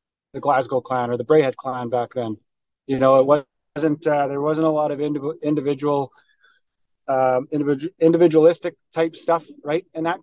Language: English